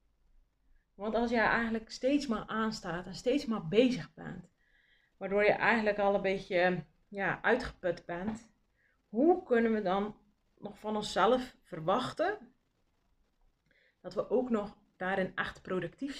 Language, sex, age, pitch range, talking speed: Dutch, female, 30-49, 175-225 Hz, 135 wpm